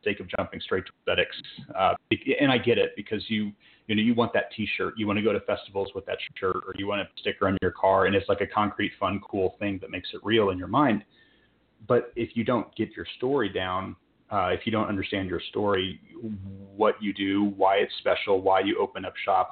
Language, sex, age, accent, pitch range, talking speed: English, male, 30-49, American, 95-115 Hz, 235 wpm